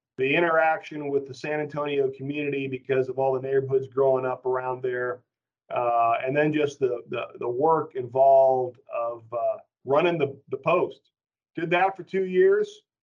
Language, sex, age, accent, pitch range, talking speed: English, male, 40-59, American, 135-175 Hz, 165 wpm